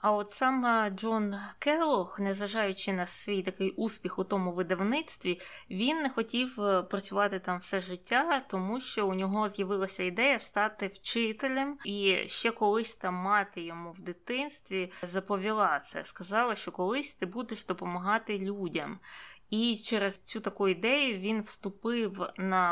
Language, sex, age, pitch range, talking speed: Ukrainian, female, 20-39, 185-230 Hz, 140 wpm